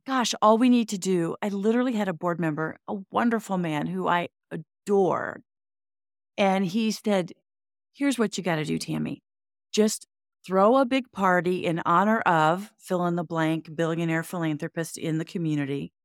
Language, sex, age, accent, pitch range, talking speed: English, female, 40-59, American, 165-220 Hz, 170 wpm